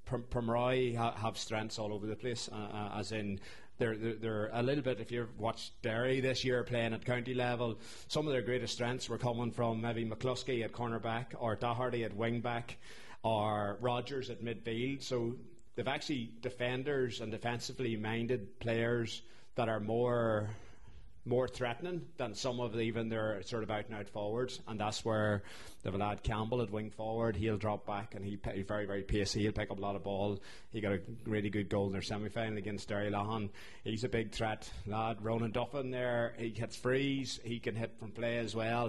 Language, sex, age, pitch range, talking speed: English, male, 30-49, 105-120 Hz, 195 wpm